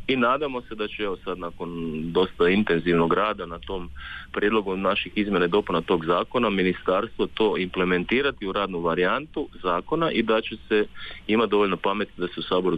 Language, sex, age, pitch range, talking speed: Croatian, male, 30-49, 80-100 Hz, 175 wpm